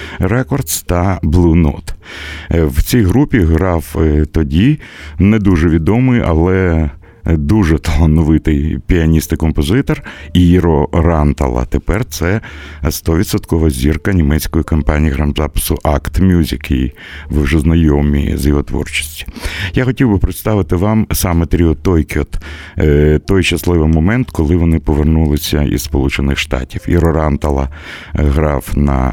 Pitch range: 75-90 Hz